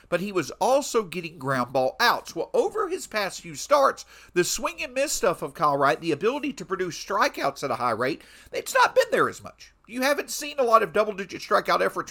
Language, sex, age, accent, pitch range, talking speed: English, male, 50-69, American, 160-240 Hz, 230 wpm